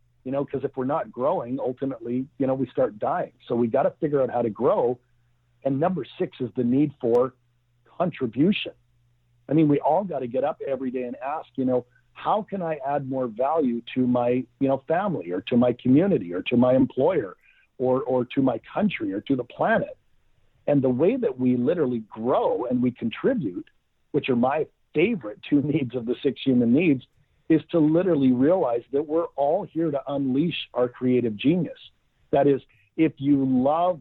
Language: English